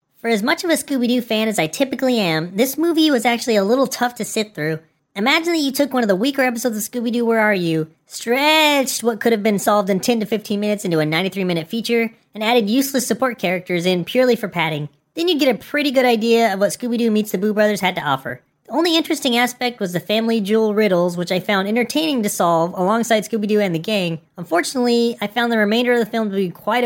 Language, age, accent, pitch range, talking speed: English, 20-39, American, 190-255 Hz, 235 wpm